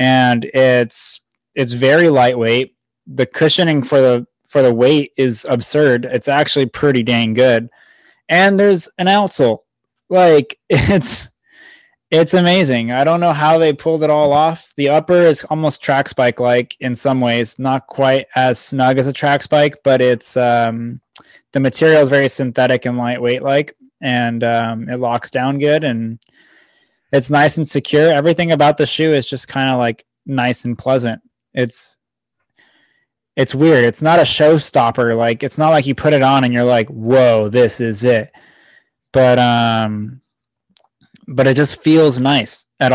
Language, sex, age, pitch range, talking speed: English, male, 20-39, 125-150 Hz, 165 wpm